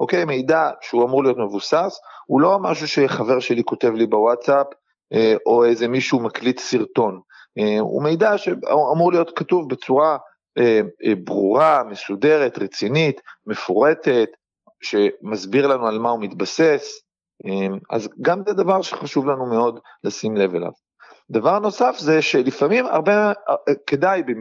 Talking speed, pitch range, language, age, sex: 130 wpm, 115-175 Hz, Hebrew, 40-59, male